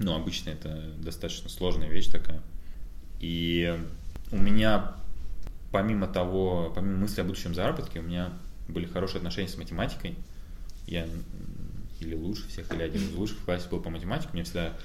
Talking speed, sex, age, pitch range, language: 155 wpm, male, 20-39, 85-95 Hz, Russian